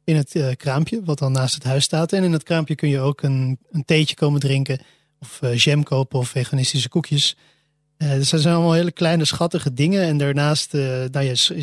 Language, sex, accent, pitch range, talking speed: Dutch, male, Dutch, 140-155 Hz, 225 wpm